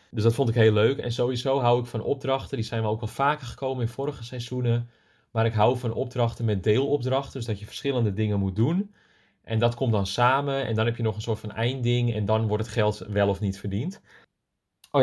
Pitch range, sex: 105-125 Hz, male